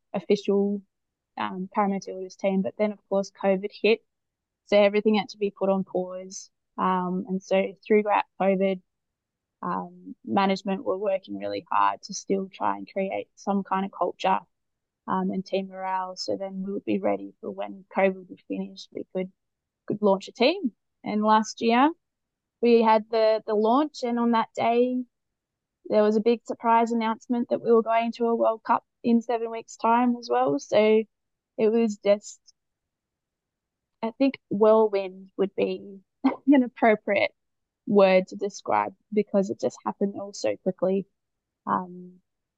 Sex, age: female, 20-39